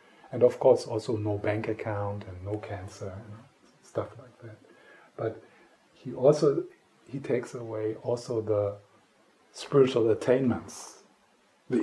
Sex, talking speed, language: male, 125 wpm, English